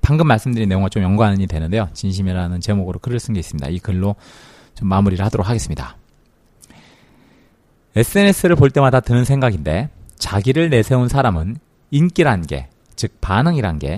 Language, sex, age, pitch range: Korean, male, 40-59, 95-130 Hz